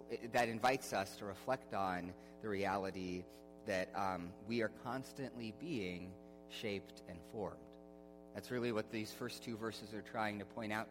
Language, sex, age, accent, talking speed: English, male, 30-49, American, 160 wpm